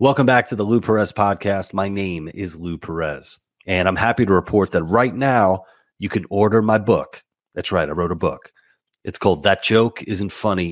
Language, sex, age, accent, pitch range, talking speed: English, male, 30-49, American, 90-110 Hz, 205 wpm